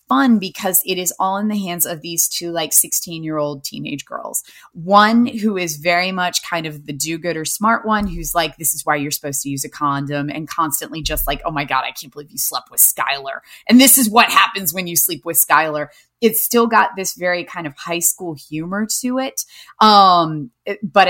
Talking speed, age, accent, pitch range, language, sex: 215 wpm, 20-39, American, 150-195 Hz, English, female